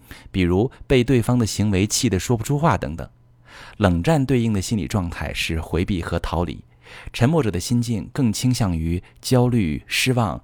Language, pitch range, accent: Chinese, 90-125 Hz, native